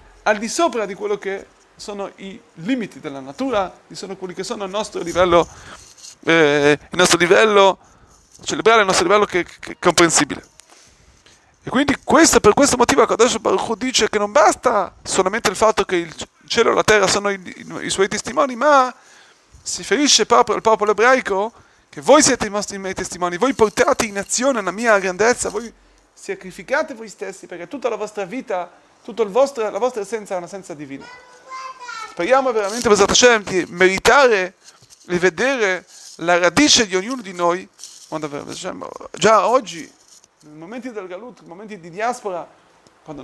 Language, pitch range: Italian, 180-235 Hz